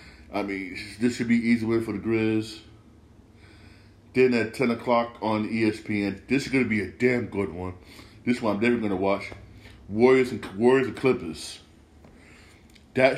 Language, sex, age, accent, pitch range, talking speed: English, male, 40-59, American, 100-120 Hz, 165 wpm